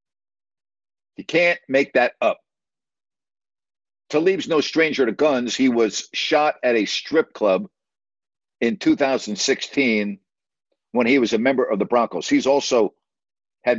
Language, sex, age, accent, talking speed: English, male, 60-79, American, 130 wpm